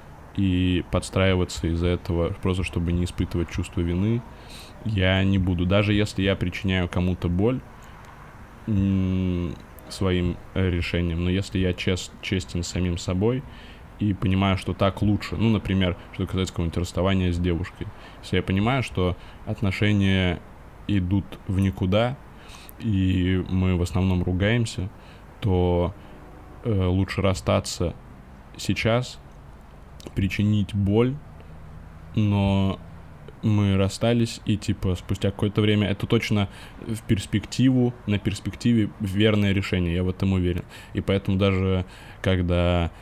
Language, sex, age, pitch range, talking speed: Russian, male, 20-39, 90-105 Hz, 120 wpm